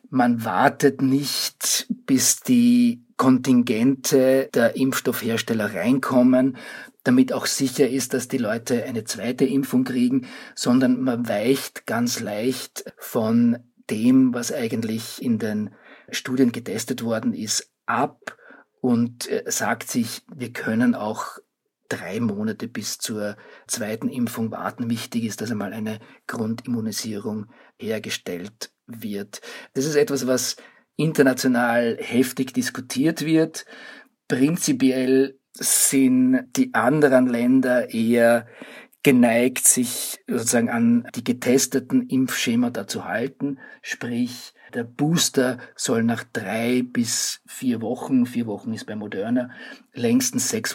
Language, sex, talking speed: German, male, 115 wpm